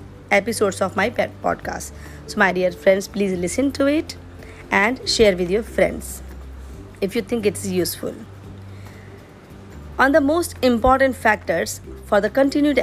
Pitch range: 175-235 Hz